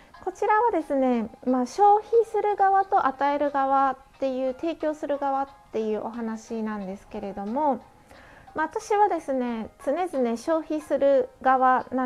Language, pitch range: Japanese, 225-320 Hz